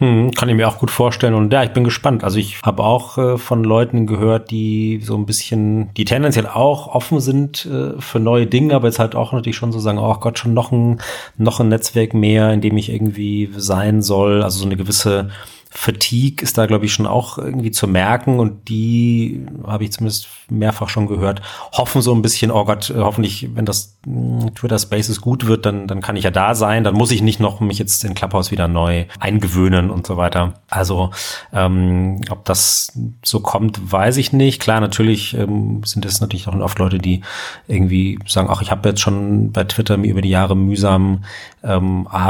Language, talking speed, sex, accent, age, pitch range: German, 210 wpm, male, German, 30-49, 100-115 Hz